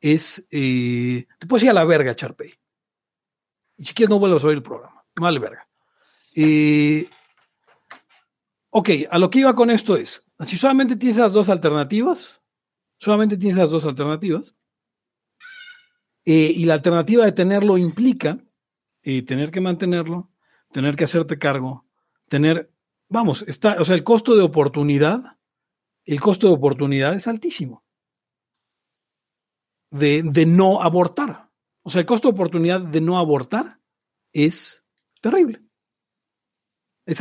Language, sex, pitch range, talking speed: Spanish, male, 160-230 Hz, 140 wpm